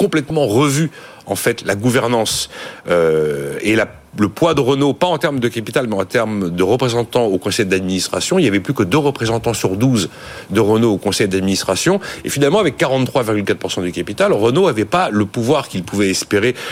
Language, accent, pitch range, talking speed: French, French, 100-150 Hz, 195 wpm